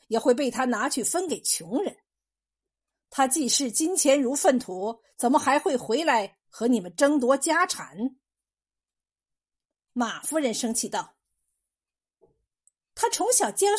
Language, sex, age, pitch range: Chinese, female, 50-69, 250-355 Hz